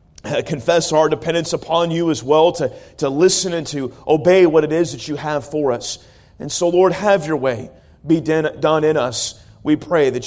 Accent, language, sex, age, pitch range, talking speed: American, English, male, 40-59, 135-175 Hz, 205 wpm